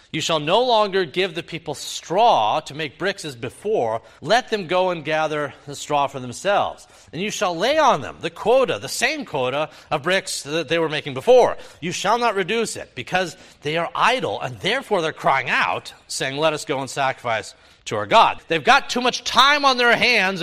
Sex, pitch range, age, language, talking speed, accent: male, 145-210 Hz, 40-59, English, 210 wpm, American